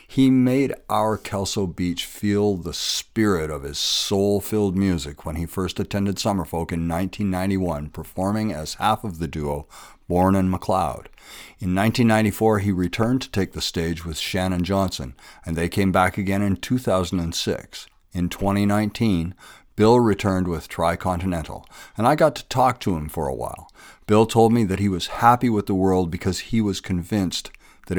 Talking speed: 165 wpm